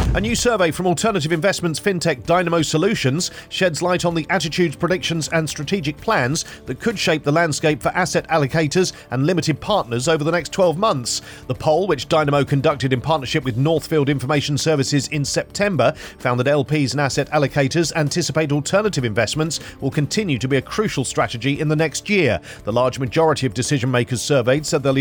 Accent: British